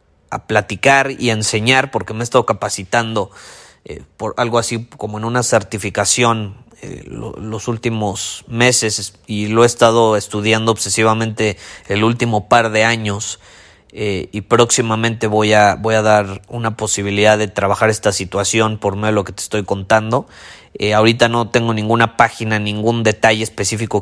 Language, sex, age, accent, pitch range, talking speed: Spanish, male, 30-49, Mexican, 100-115 Hz, 155 wpm